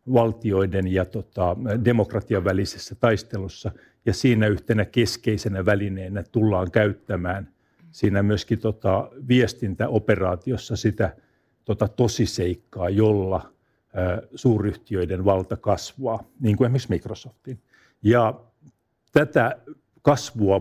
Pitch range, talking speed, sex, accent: 100-120 Hz, 80 wpm, male, native